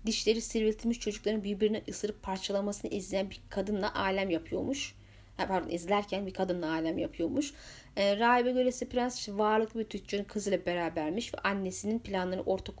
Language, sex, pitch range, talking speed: Turkish, female, 190-245 Hz, 135 wpm